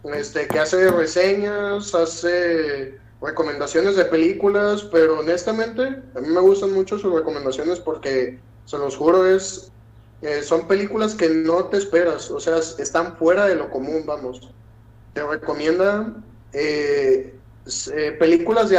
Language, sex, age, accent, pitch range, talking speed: Spanish, male, 30-49, Mexican, 135-185 Hz, 135 wpm